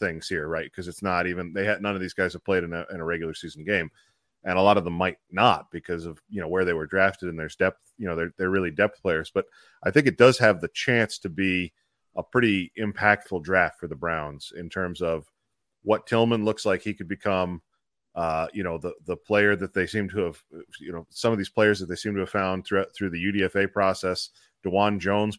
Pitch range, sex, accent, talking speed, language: 90-110 Hz, male, American, 245 wpm, English